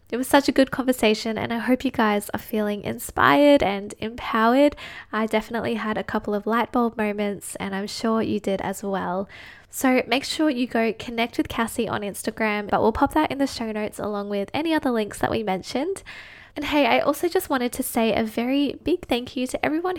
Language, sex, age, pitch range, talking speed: English, female, 10-29, 215-265 Hz, 220 wpm